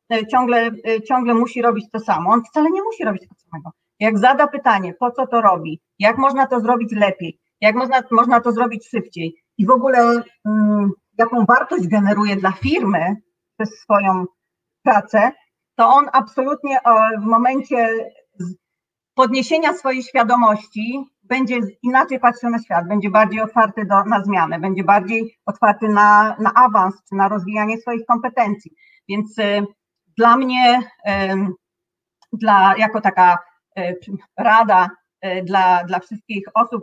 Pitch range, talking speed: 195-240 Hz, 135 wpm